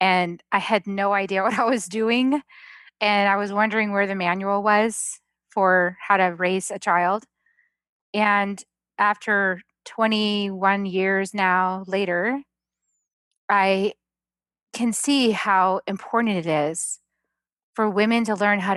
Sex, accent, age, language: female, American, 20-39, English